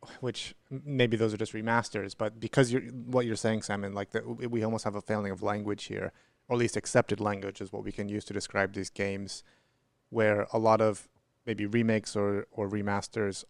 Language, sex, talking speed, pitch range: English, male, 205 wpm, 100-125 Hz